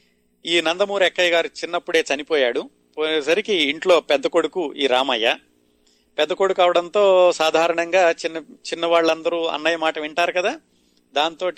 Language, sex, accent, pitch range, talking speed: Telugu, male, native, 130-170 Hz, 125 wpm